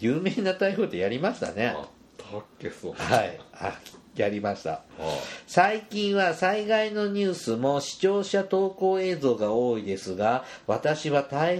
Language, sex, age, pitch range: Japanese, male, 50-69, 115-175 Hz